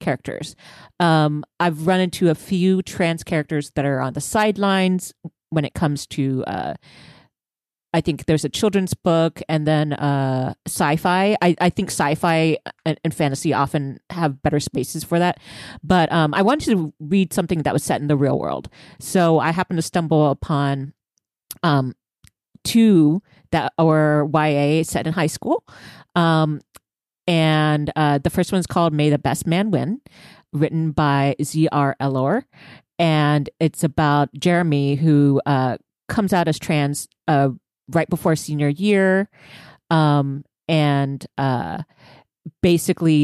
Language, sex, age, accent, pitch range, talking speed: English, female, 40-59, American, 145-175 Hz, 145 wpm